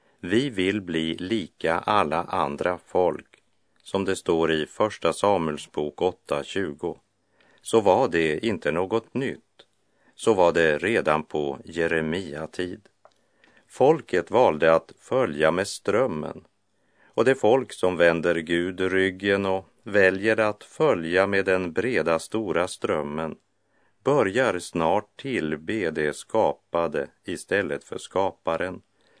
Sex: male